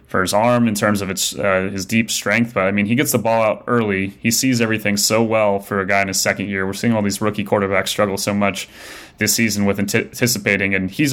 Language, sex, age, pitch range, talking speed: English, male, 20-39, 100-120 Hz, 255 wpm